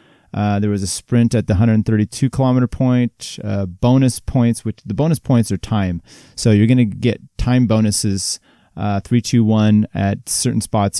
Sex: male